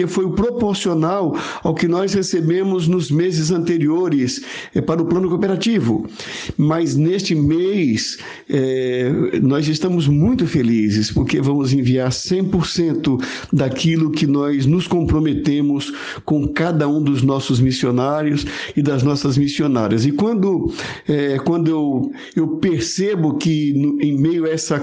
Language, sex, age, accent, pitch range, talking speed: Portuguese, male, 60-79, Brazilian, 145-175 Hz, 135 wpm